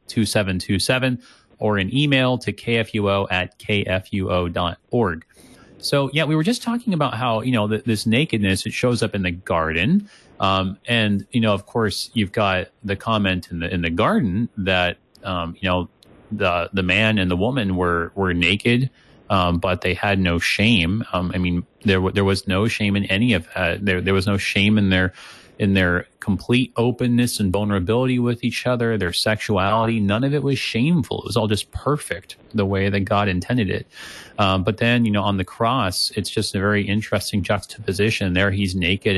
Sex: male